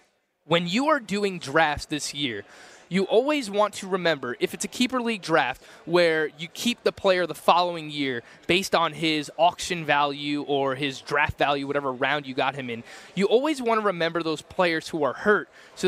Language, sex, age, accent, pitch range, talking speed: English, male, 20-39, American, 145-185 Hz, 195 wpm